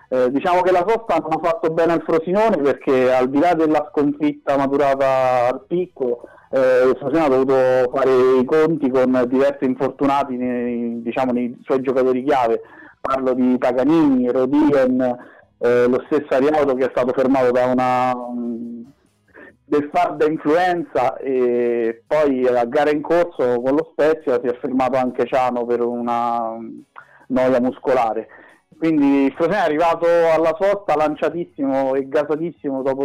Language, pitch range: Italian, 125-150 Hz